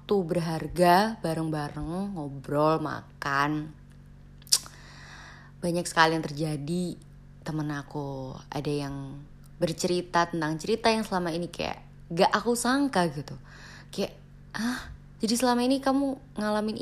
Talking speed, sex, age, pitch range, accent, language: 105 wpm, female, 20-39, 145-195 Hz, native, Indonesian